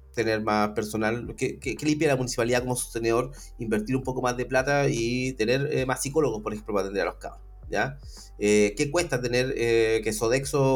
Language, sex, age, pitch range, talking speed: Spanish, male, 30-49, 115-165 Hz, 205 wpm